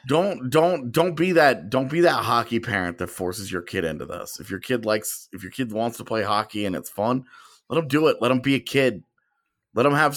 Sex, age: male, 30-49